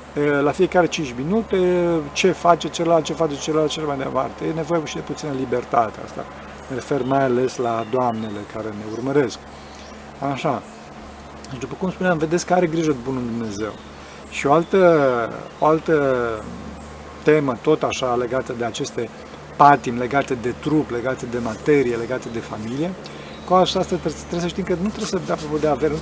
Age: 40-59